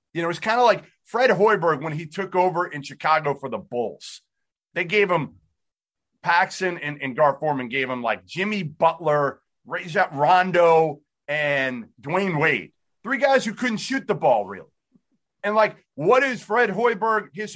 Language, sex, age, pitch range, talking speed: English, male, 30-49, 155-210 Hz, 170 wpm